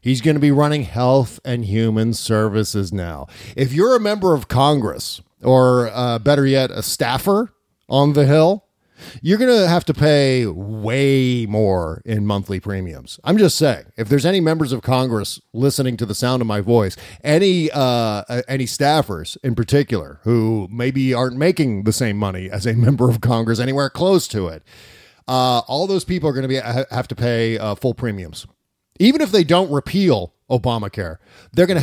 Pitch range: 110-140 Hz